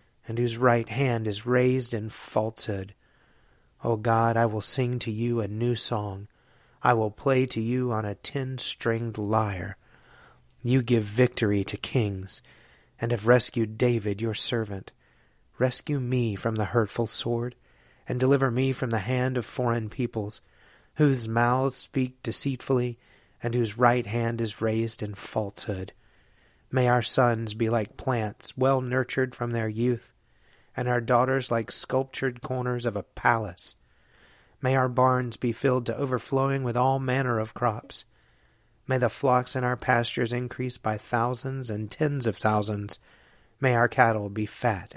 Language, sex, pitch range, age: English, male, 110-130 Hz, 30-49